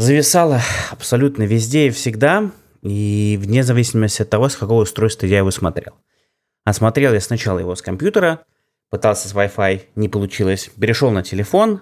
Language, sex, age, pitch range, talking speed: Russian, male, 20-39, 105-135 Hz, 150 wpm